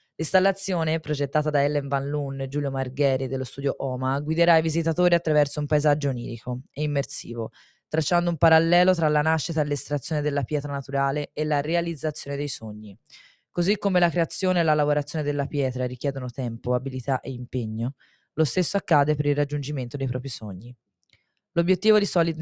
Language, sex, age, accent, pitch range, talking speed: Italian, female, 20-39, native, 135-160 Hz, 170 wpm